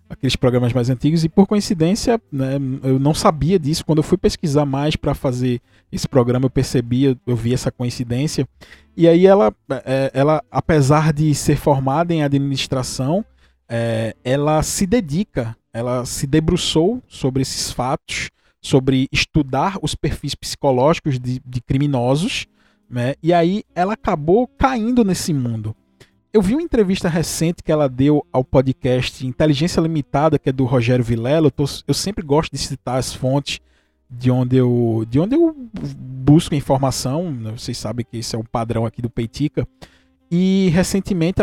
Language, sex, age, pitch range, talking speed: Portuguese, male, 20-39, 125-165 Hz, 155 wpm